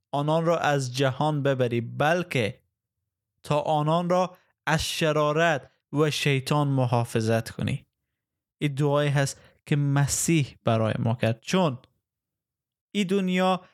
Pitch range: 125-155 Hz